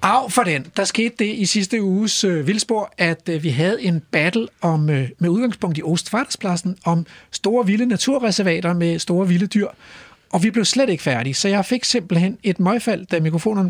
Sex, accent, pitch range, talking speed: male, native, 160-215 Hz, 195 wpm